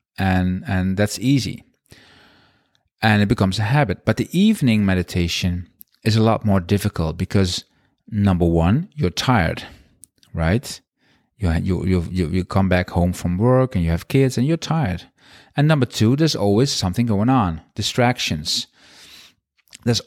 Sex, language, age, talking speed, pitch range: male, English, 40-59, 150 wpm, 95-135 Hz